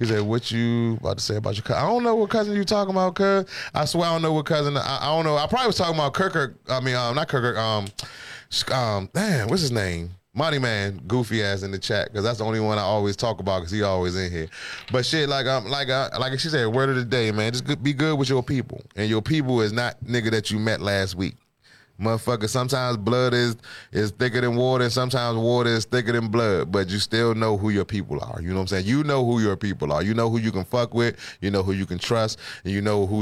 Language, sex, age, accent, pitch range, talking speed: English, male, 20-39, American, 100-125 Hz, 275 wpm